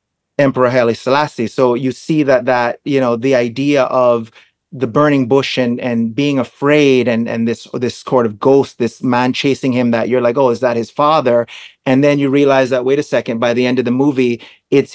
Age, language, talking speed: 30-49, English, 215 wpm